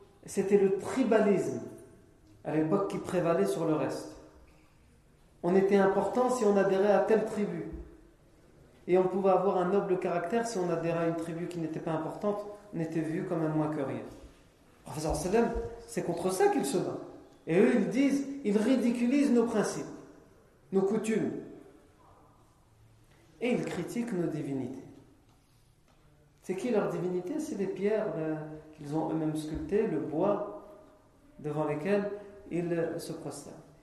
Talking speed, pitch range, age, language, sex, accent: 155 wpm, 150-200 Hz, 40-59, French, male, French